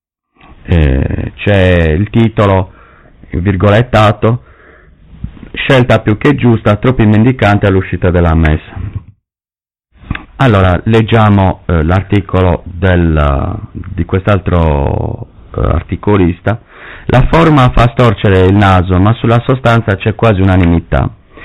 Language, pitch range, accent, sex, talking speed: Italian, 90-115 Hz, native, male, 90 wpm